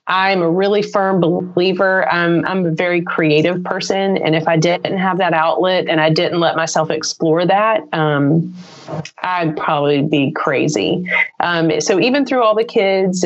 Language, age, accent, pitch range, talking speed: English, 30-49, American, 155-180 Hz, 165 wpm